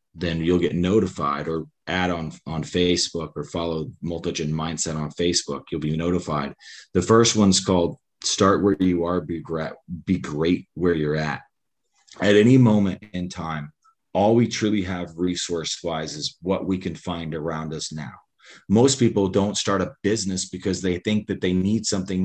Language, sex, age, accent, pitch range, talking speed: English, male, 30-49, American, 90-110 Hz, 175 wpm